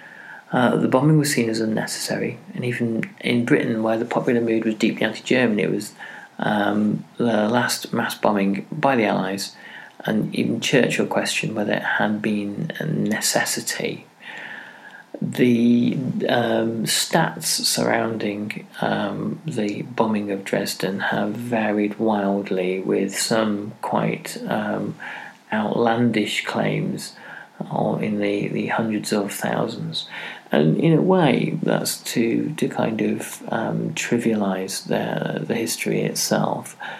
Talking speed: 125 wpm